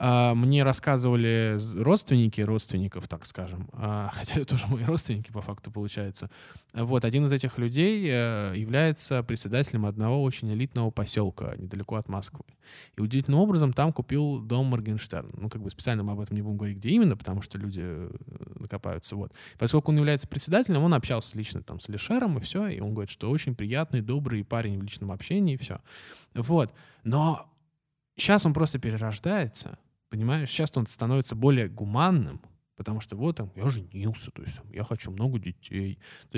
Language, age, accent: Russian, 20-39, native